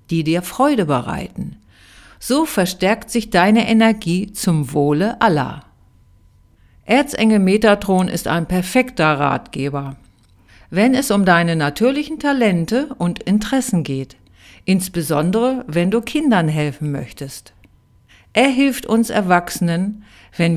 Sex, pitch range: female, 145-235 Hz